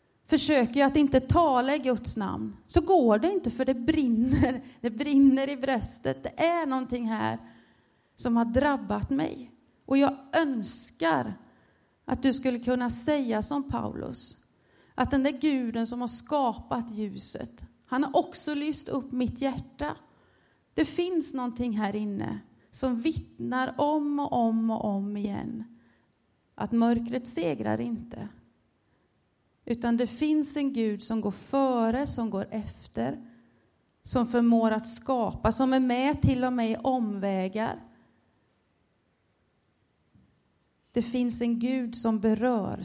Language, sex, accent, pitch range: Swedish, female, native, 220-270 Hz